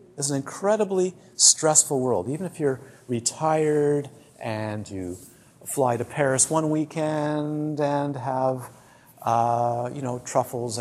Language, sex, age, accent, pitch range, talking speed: English, male, 50-69, American, 120-155 Hz, 120 wpm